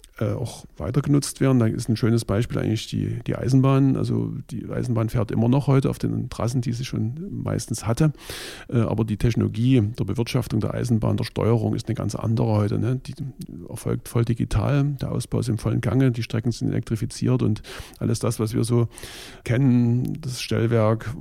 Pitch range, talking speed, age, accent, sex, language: 110-130 Hz, 185 wpm, 50-69, German, male, German